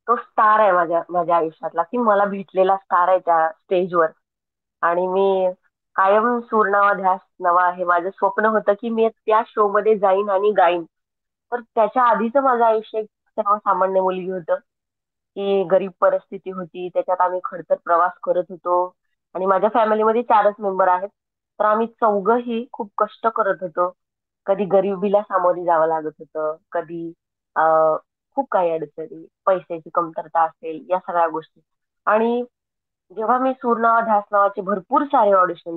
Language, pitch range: Marathi, 175-210 Hz